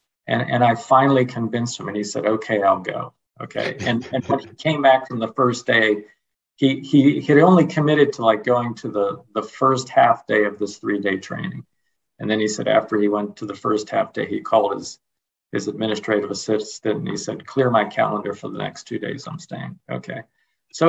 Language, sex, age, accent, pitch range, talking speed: English, male, 50-69, American, 110-140 Hz, 220 wpm